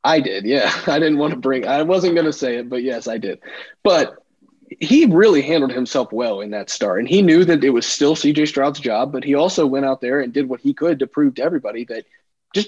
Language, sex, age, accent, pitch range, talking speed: English, male, 20-39, American, 120-155 Hz, 255 wpm